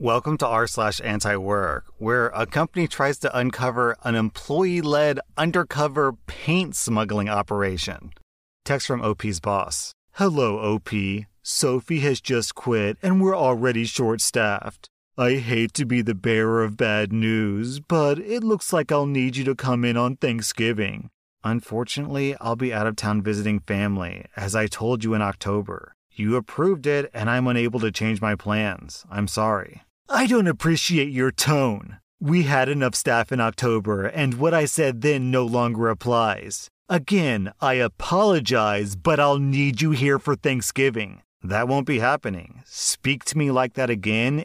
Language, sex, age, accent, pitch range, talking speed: English, male, 30-49, American, 110-145 Hz, 160 wpm